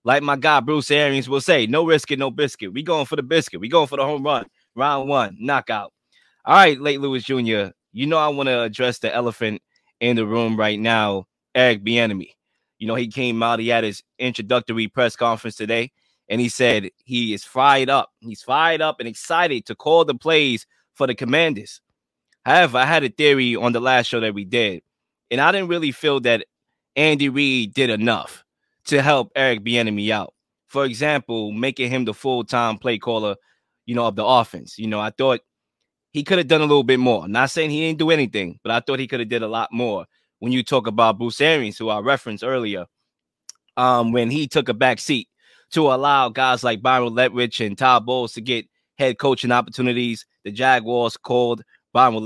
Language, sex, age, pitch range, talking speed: English, male, 20-39, 115-135 Hz, 210 wpm